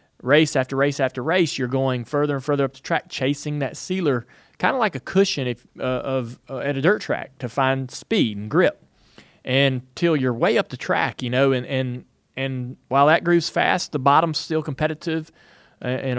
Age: 30-49